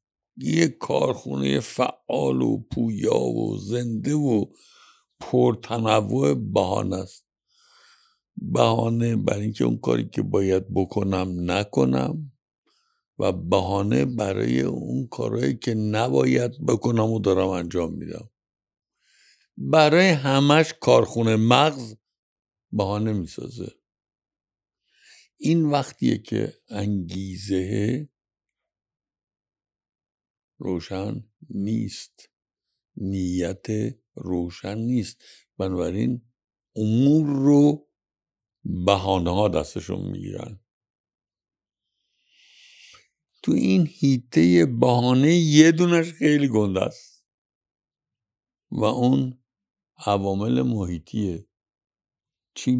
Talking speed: 75 wpm